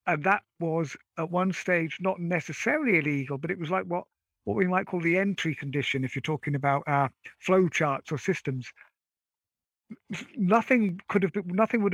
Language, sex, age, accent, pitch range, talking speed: English, male, 50-69, British, 155-195 Hz, 180 wpm